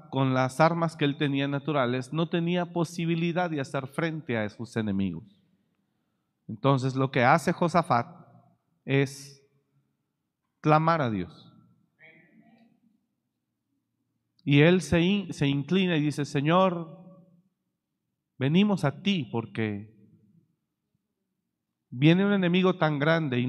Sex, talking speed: male, 110 wpm